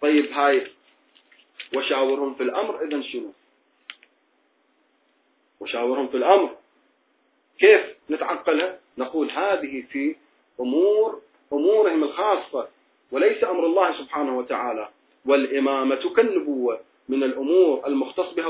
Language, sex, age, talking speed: Arabic, male, 30-49, 95 wpm